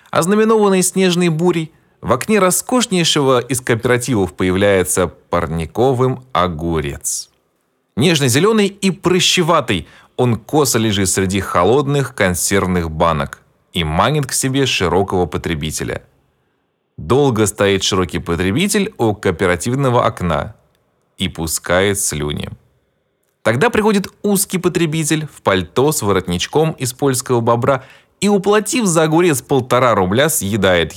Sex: male